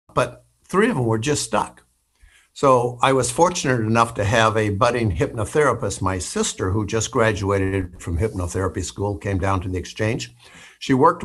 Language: English